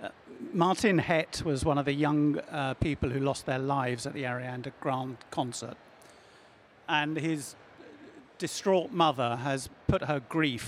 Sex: male